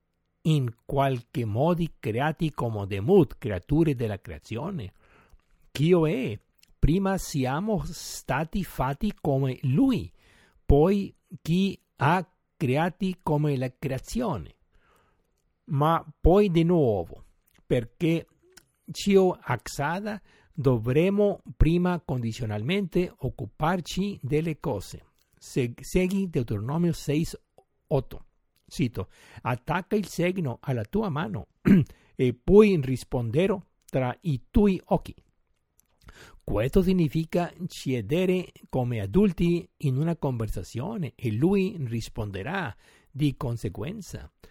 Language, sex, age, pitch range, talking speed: Italian, male, 60-79, 125-175 Hz, 95 wpm